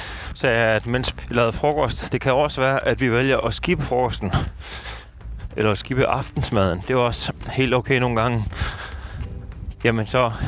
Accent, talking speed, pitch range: native, 165 wpm, 100-125 Hz